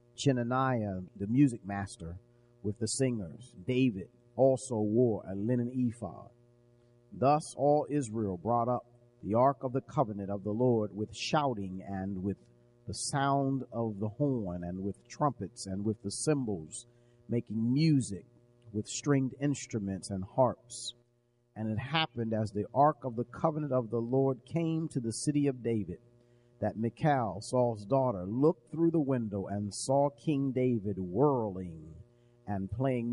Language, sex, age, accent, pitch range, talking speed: English, male, 50-69, American, 110-135 Hz, 150 wpm